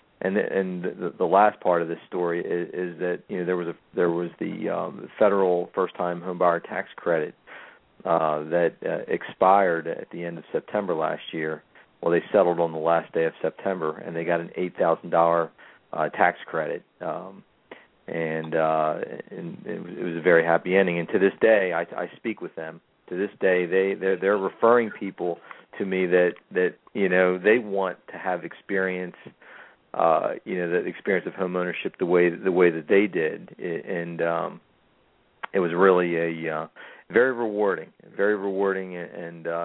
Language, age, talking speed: English, 40-59, 190 wpm